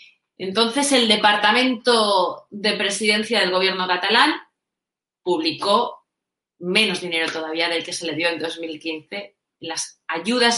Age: 30-49